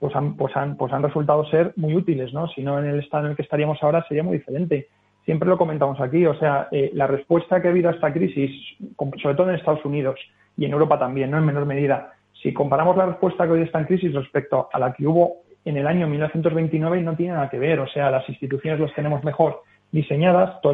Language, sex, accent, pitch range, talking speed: Spanish, male, Spanish, 140-170 Hz, 245 wpm